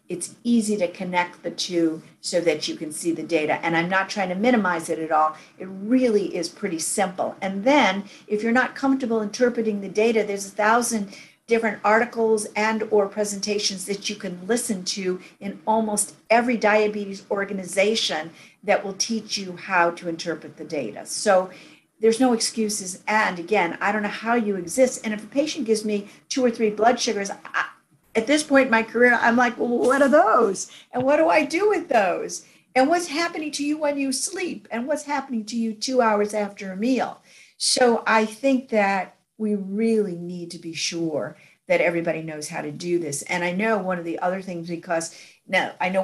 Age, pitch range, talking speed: 50-69, 165-225 Hz, 200 wpm